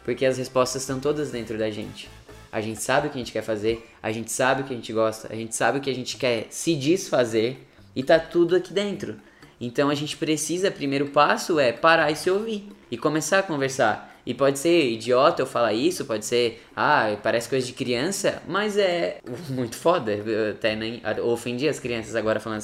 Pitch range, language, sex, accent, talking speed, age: 115-155 Hz, Portuguese, male, Brazilian, 215 wpm, 10-29